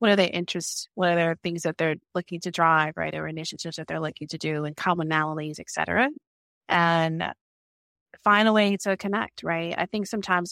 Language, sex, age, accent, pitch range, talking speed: English, female, 30-49, American, 165-205 Hz, 200 wpm